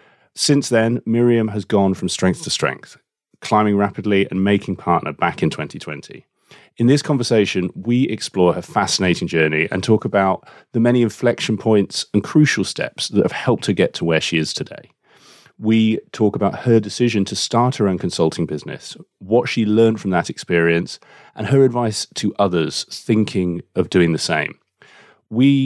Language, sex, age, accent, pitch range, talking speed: English, male, 30-49, British, 95-115 Hz, 170 wpm